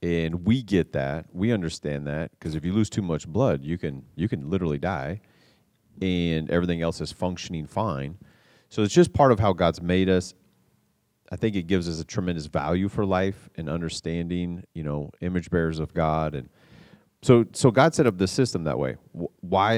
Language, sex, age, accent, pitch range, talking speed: English, male, 30-49, American, 85-110 Hz, 195 wpm